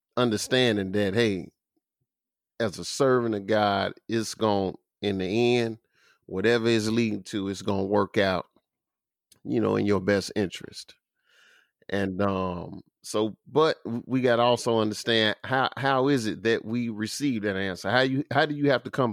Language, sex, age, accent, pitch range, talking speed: English, male, 30-49, American, 100-120 Hz, 165 wpm